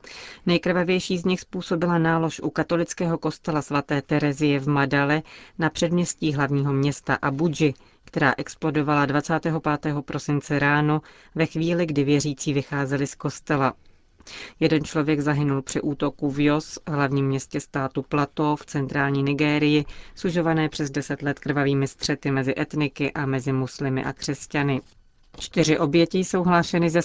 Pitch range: 140-160 Hz